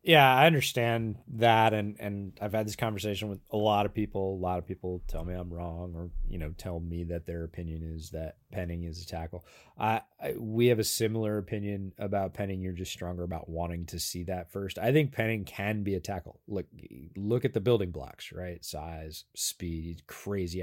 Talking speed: 210 wpm